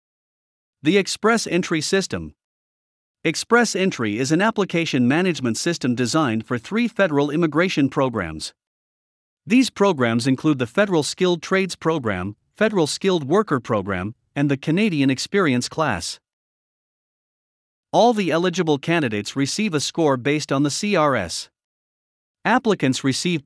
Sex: male